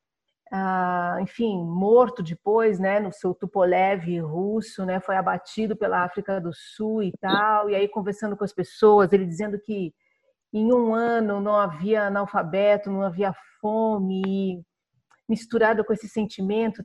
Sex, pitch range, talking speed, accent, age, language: female, 190-245 Hz, 145 wpm, Brazilian, 40-59, Portuguese